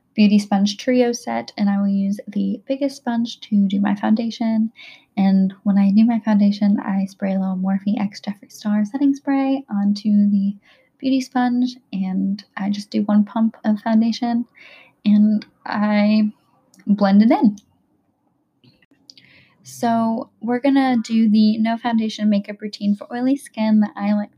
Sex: female